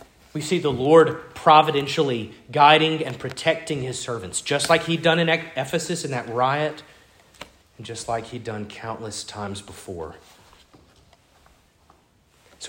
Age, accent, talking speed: 30-49, American, 130 wpm